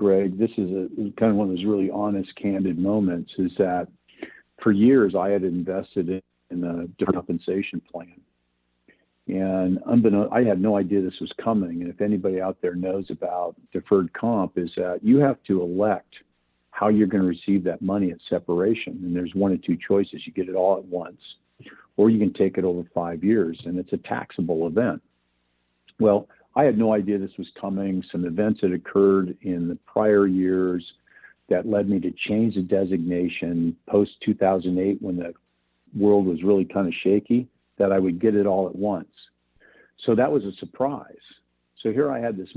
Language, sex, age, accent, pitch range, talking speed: English, male, 50-69, American, 85-100 Hz, 190 wpm